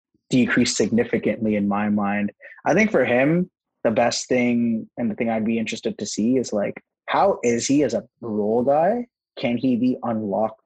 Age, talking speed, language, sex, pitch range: 20-39, 185 wpm, English, male, 110-120 Hz